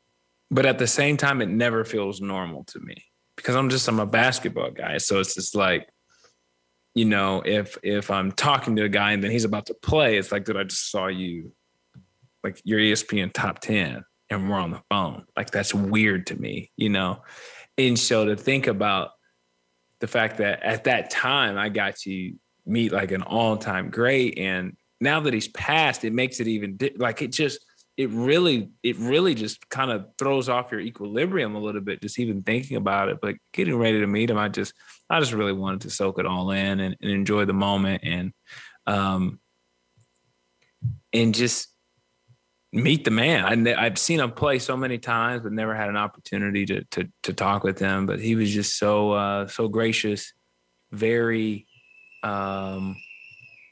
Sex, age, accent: male, 20-39, American